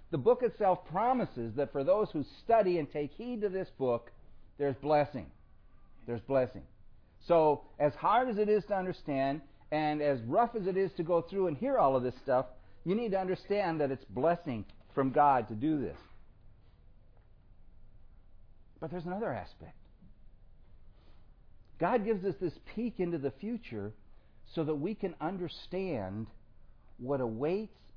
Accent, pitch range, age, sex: American, 105-170 Hz, 50-69, male